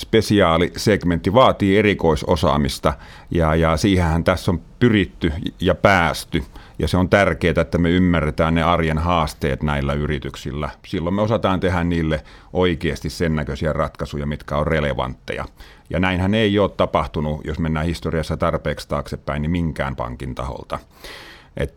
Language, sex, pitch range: Finnish, male, 70-90 Hz